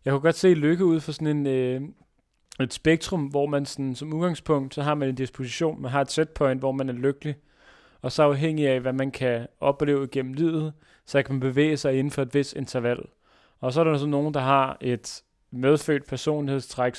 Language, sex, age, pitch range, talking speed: Danish, male, 30-49, 130-150 Hz, 215 wpm